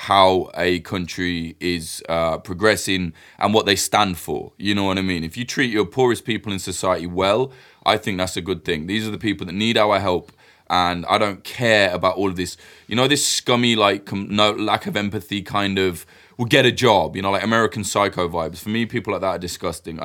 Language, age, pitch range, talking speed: English, 20-39, 90-110 Hz, 230 wpm